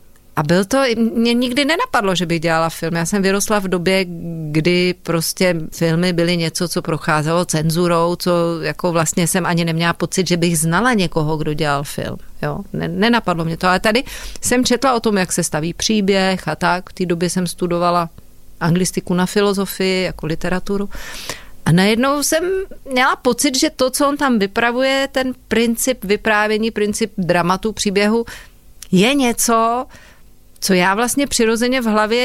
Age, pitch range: 40-59, 180-235 Hz